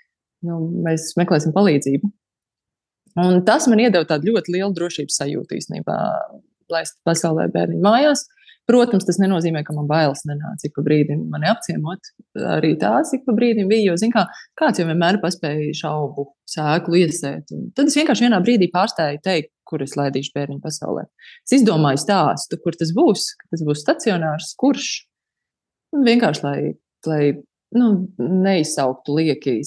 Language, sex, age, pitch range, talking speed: English, female, 20-39, 155-210 Hz, 140 wpm